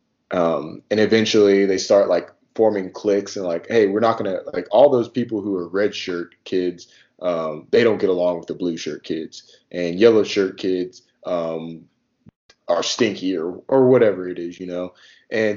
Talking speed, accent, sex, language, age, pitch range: 190 wpm, American, male, English, 20-39, 95-115 Hz